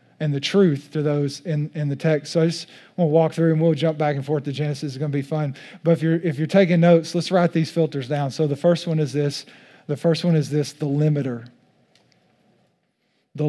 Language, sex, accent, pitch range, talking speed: English, male, American, 150-190 Hz, 245 wpm